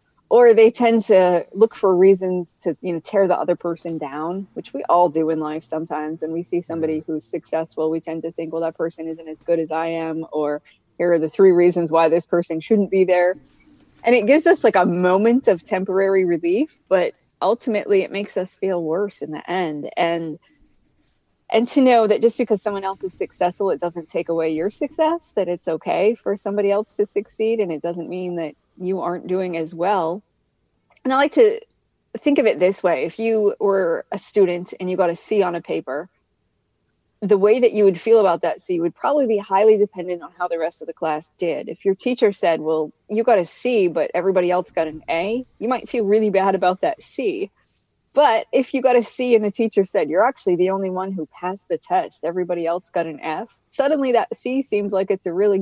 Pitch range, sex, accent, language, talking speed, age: 170-225 Hz, female, American, English, 225 wpm, 20-39